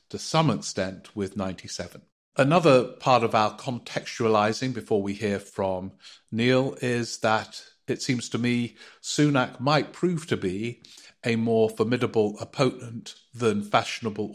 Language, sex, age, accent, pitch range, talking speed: English, male, 50-69, British, 100-125 Hz, 135 wpm